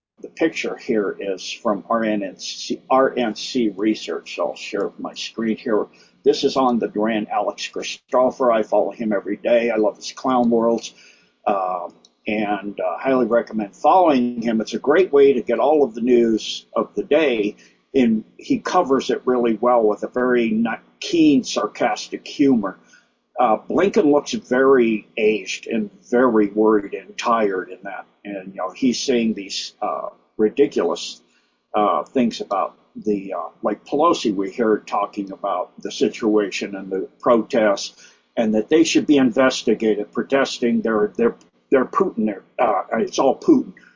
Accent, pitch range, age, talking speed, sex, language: American, 110-135 Hz, 50-69, 155 wpm, male, English